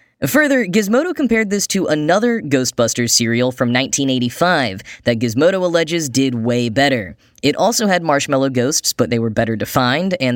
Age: 10-29